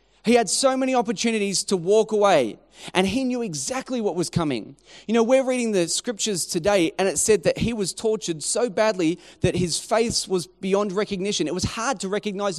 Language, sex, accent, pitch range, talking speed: English, male, Australian, 180-225 Hz, 200 wpm